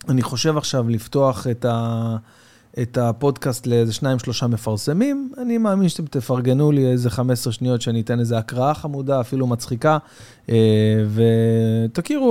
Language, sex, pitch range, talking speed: Hebrew, male, 120-165 Hz, 135 wpm